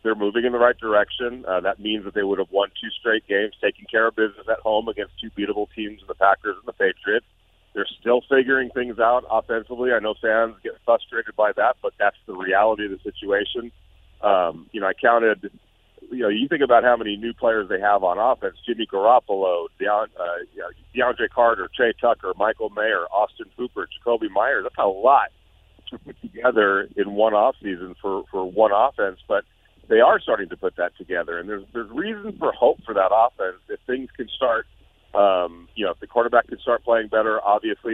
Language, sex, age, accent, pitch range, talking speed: English, male, 40-59, American, 105-125 Hz, 205 wpm